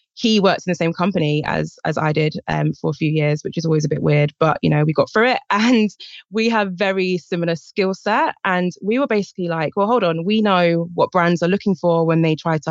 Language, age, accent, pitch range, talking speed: English, 20-39, British, 160-200 Hz, 255 wpm